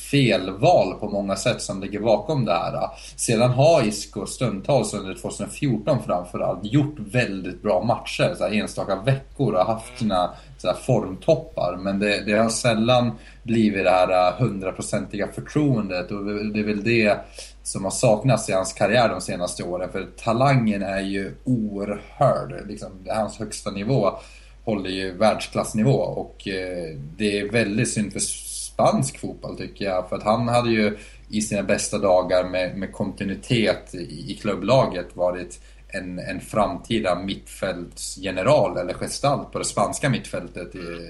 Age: 20-39